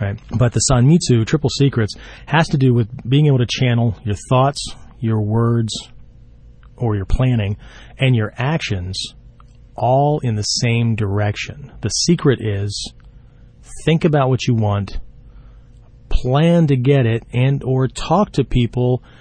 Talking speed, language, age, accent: 140 wpm, English, 40-59, American